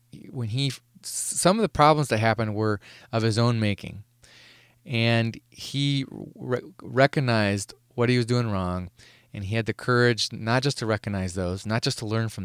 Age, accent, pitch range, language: 20-39, American, 105-140 Hz, English